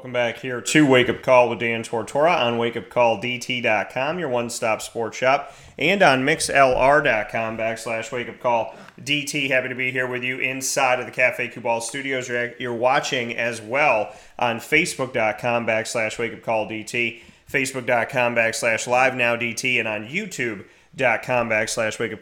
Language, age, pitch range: English, 30-49, 115-135 Hz